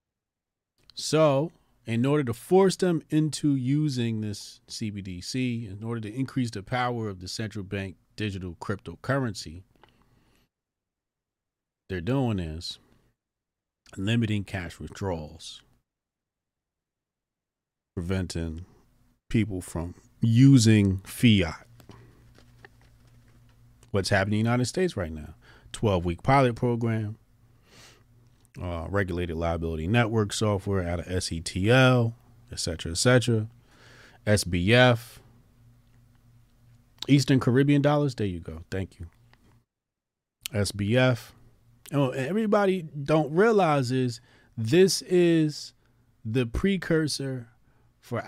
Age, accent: 40-59, American